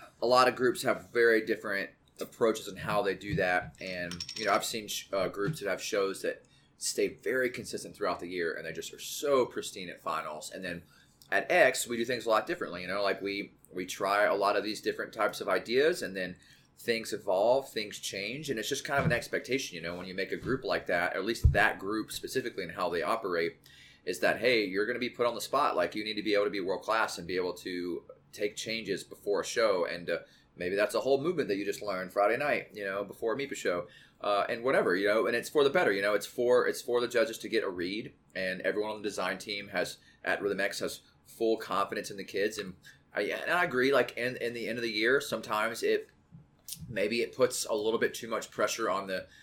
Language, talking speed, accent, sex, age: English, 250 wpm, American, male, 30-49